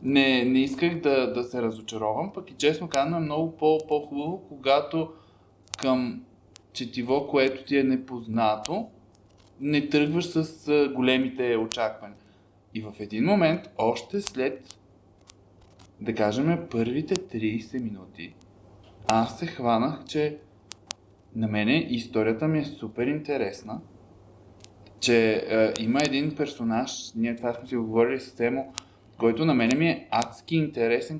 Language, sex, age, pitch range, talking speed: Bulgarian, male, 20-39, 105-150 Hz, 130 wpm